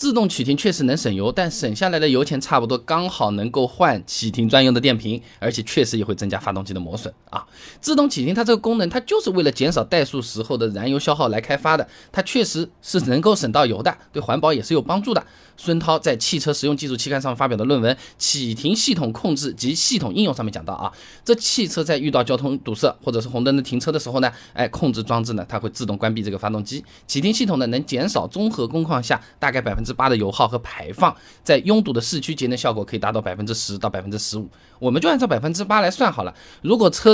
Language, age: Chinese, 20-39